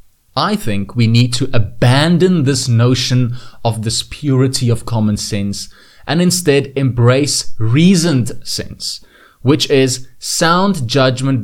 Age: 20-39